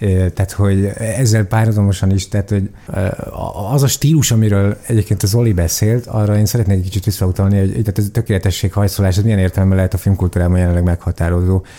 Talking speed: 185 wpm